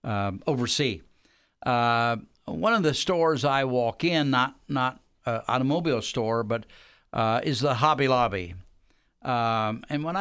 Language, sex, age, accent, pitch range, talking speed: English, male, 60-79, American, 120-155 Hz, 140 wpm